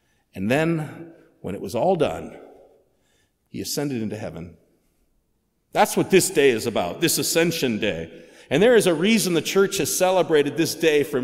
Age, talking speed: 50-69, 170 wpm